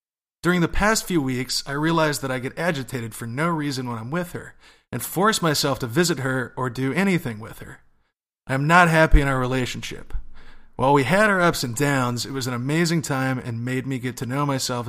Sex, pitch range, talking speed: male, 125-160 Hz, 220 wpm